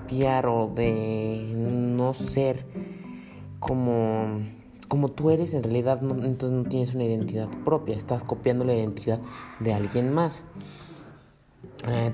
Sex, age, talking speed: male, 30-49, 120 wpm